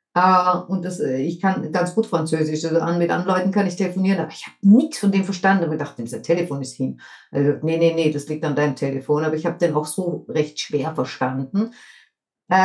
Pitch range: 160-210 Hz